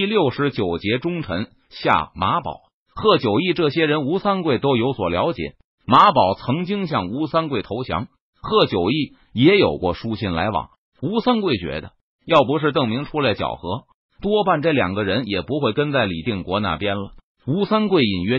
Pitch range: 120-180 Hz